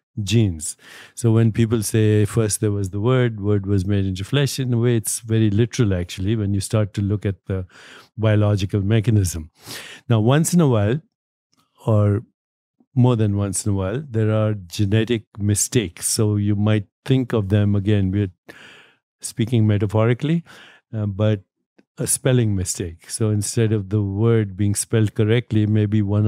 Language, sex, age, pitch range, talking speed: English, male, 60-79, 100-115 Hz, 165 wpm